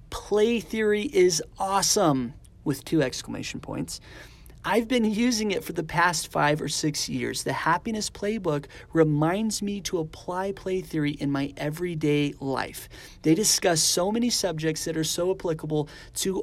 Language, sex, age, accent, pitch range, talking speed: English, male, 30-49, American, 145-195 Hz, 155 wpm